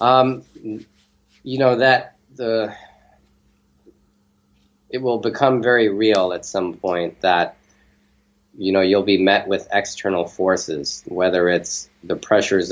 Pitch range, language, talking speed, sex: 85-95 Hz, English, 125 wpm, male